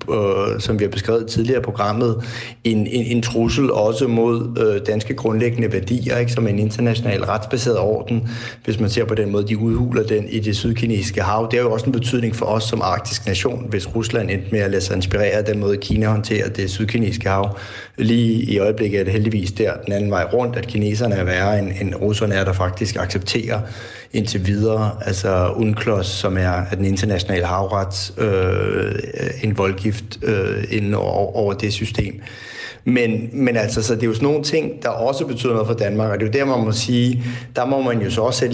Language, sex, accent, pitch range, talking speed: Danish, male, native, 105-120 Hz, 200 wpm